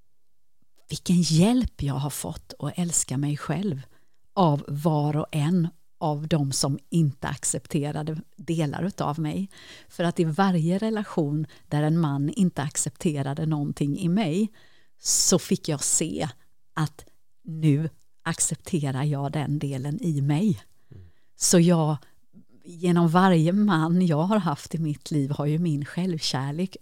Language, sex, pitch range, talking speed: Swedish, female, 145-175 Hz, 135 wpm